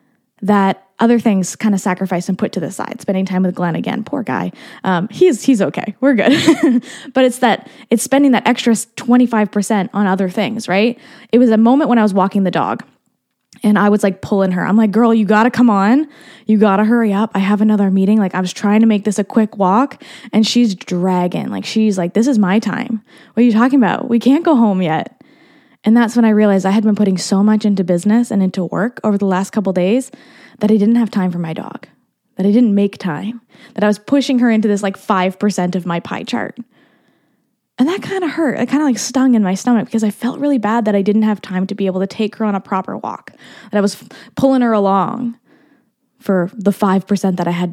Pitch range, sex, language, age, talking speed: 195-245 Hz, female, English, 10-29, 245 wpm